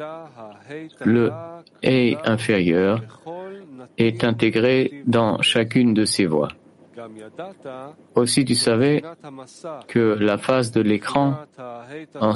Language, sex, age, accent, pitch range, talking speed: English, male, 50-69, French, 110-145 Hz, 95 wpm